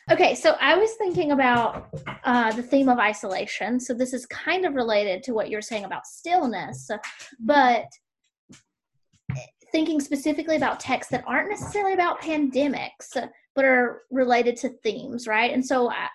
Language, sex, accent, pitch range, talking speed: English, female, American, 225-280 Hz, 150 wpm